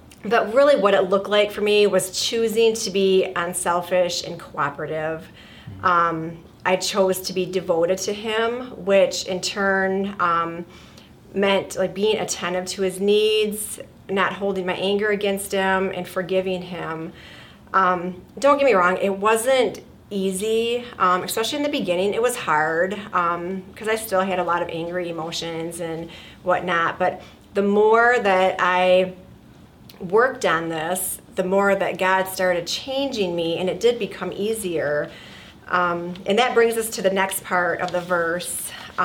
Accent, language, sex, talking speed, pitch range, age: American, English, female, 160 wpm, 175-200 Hz, 30-49